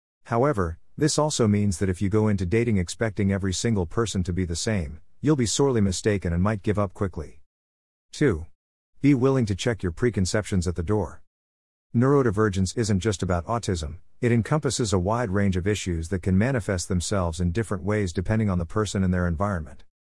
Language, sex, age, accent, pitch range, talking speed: English, male, 50-69, American, 90-110 Hz, 190 wpm